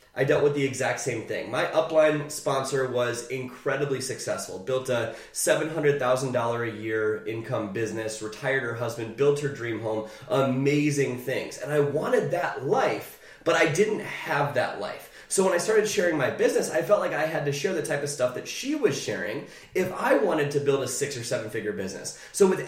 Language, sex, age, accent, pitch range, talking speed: English, male, 20-39, American, 125-170 Hz, 200 wpm